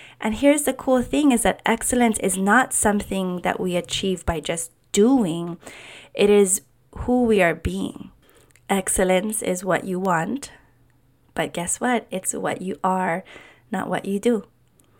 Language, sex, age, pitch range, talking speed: English, female, 20-39, 175-220 Hz, 155 wpm